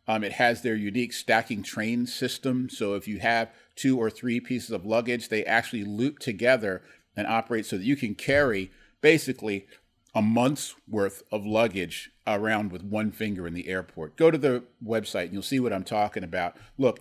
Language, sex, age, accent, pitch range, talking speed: English, male, 40-59, American, 100-125 Hz, 190 wpm